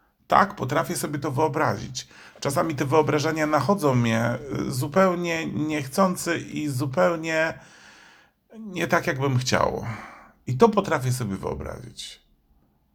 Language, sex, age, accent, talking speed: Polish, male, 50-69, native, 110 wpm